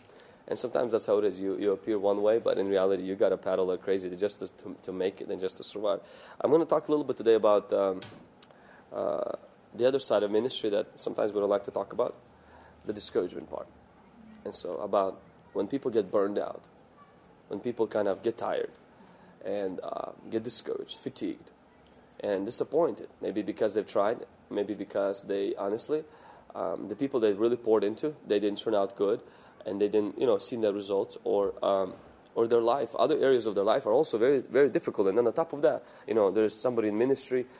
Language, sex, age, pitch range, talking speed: English, male, 20-39, 105-150 Hz, 210 wpm